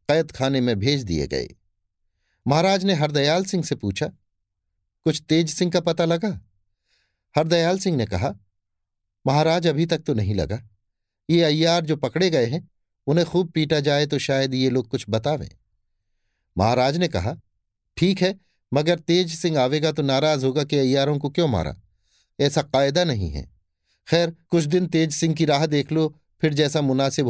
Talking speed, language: 170 wpm, Hindi